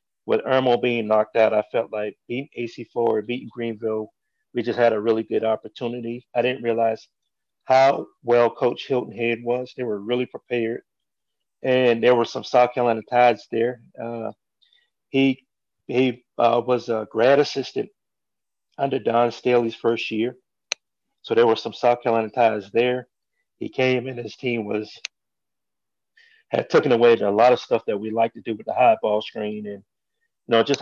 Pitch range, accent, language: 110-125 Hz, American, English